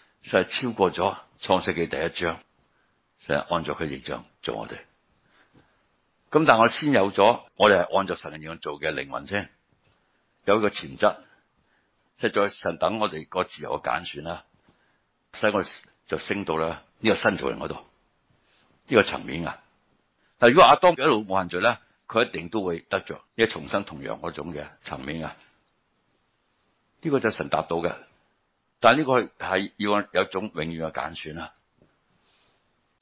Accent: native